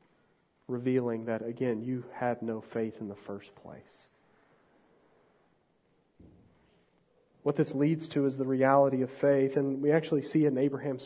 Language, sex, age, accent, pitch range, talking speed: English, male, 40-59, American, 155-200 Hz, 145 wpm